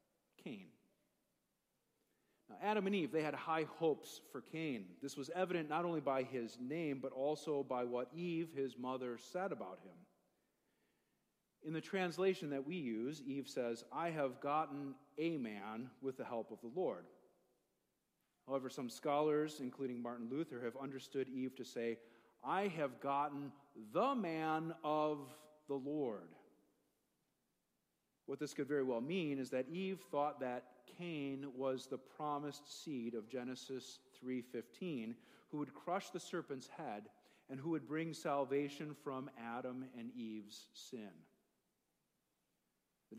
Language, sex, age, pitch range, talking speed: English, male, 40-59, 130-170 Hz, 145 wpm